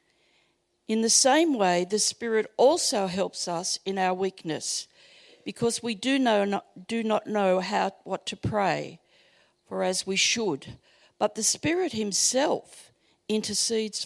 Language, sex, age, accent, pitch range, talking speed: English, female, 50-69, Australian, 190-235 Hz, 140 wpm